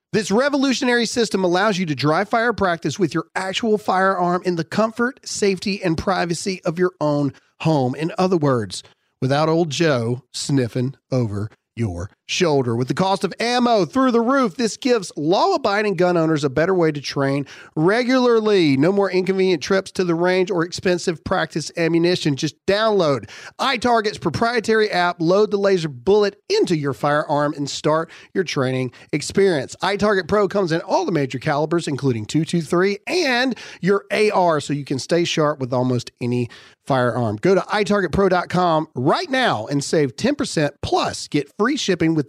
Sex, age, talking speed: male, 40-59, 165 wpm